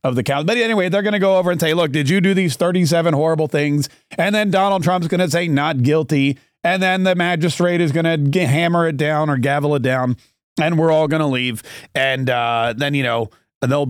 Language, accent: English, American